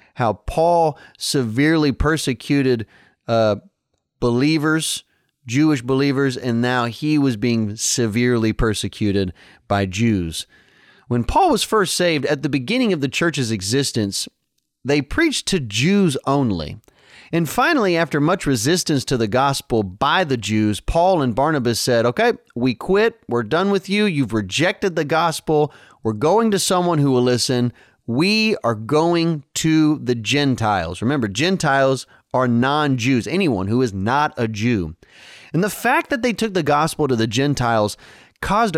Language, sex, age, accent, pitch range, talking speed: English, male, 30-49, American, 120-185 Hz, 145 wpm